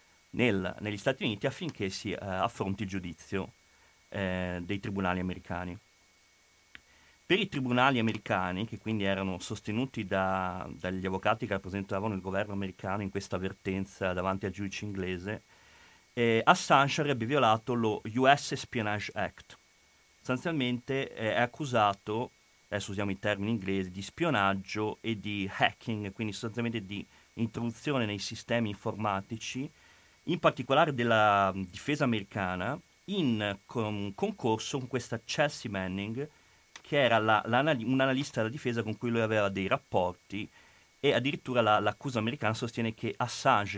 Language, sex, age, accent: Italian, male, 30-49, native